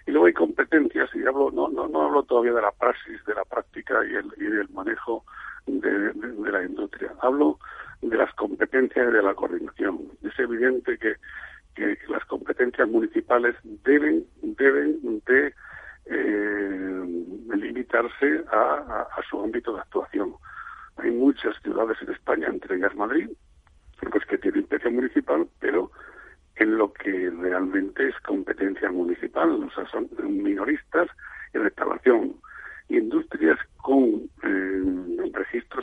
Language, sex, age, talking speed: Spanish, male, 60-79, 145 wpm